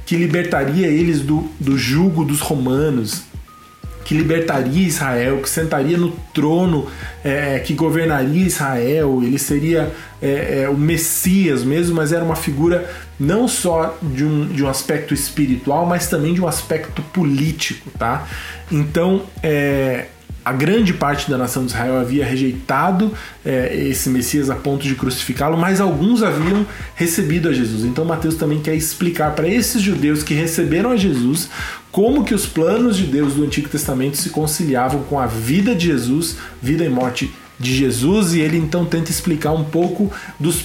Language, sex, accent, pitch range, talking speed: Portuguese, male, Brazilian, 135-170 Hz, 160 wpm